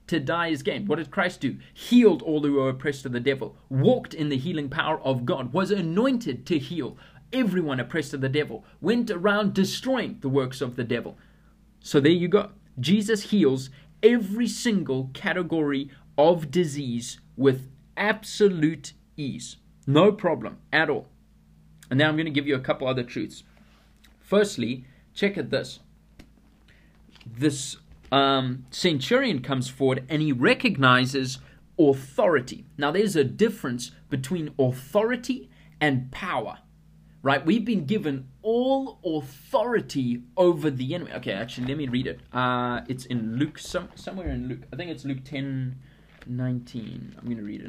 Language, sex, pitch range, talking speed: English, male, 130-190 Hz, 155 wpm